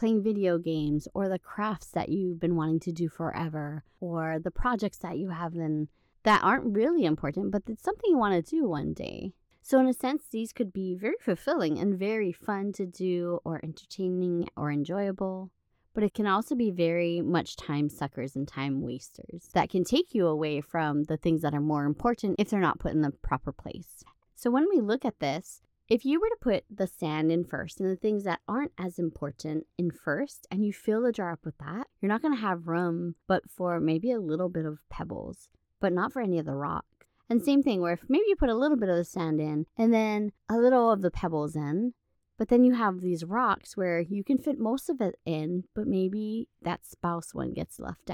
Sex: female